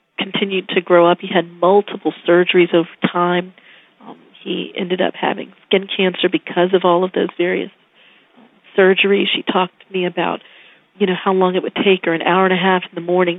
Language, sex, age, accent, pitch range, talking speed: English, female, 40-59, American, 180-200 Hz, 205 wpm